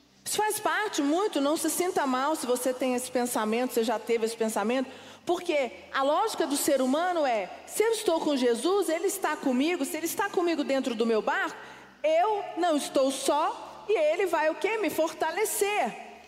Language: Portuguese